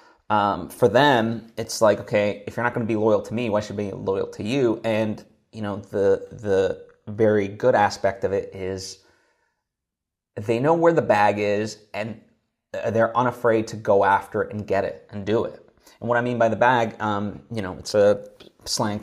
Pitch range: 105-120 Hz